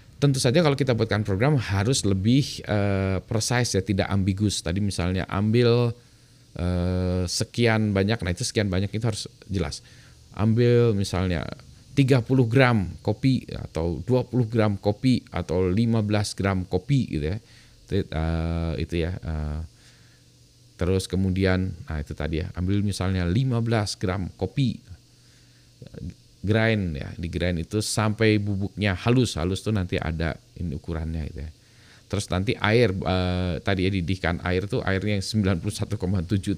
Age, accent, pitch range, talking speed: 20-39, native, 90-115 Hz, 135 wpm